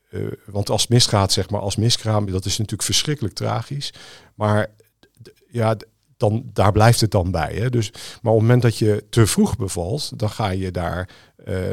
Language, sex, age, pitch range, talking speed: Dutch, male, 50-69, 95-120 Hz, 185 wpm